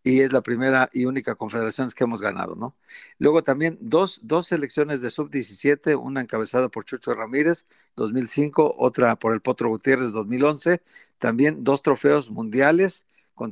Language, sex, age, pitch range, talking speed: Spanish, male, 50-69, 130-165 Hz, 155 wpm